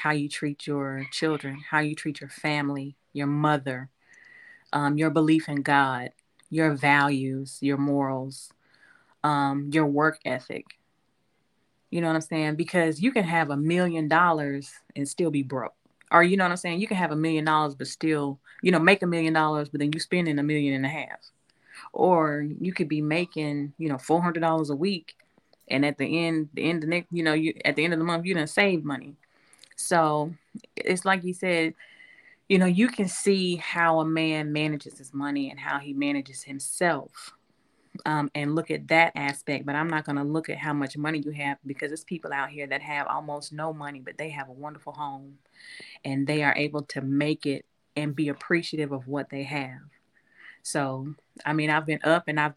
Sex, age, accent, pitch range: female, 30-49, American, 140-160 Hz